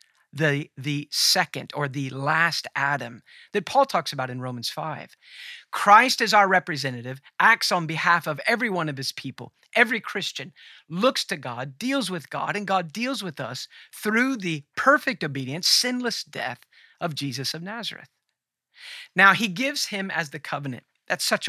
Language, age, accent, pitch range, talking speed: English, 50-69, American, 135-195 Hz, 165 wpm